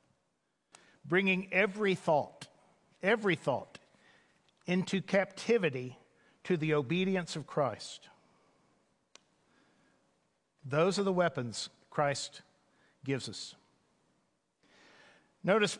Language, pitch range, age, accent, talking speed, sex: English, 150-195 Hz, 50-69, American, 75 wpm, male